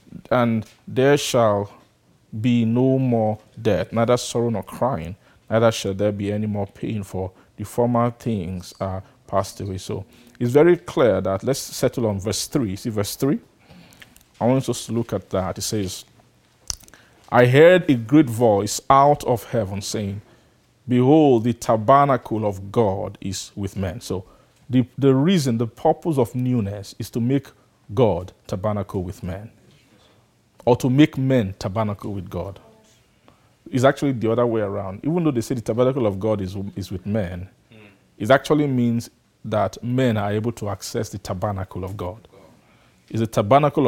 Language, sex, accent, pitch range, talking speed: English, male, Nigerian, 100-125 Hz, 165 wpm